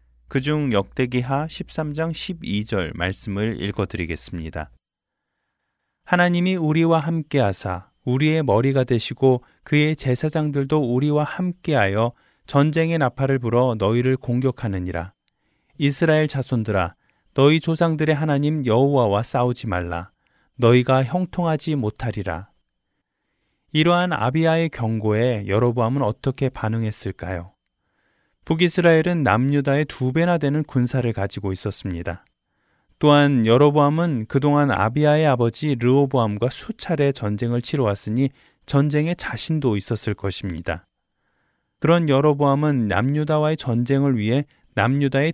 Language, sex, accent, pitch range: Korean, male, native, 105-155 Hz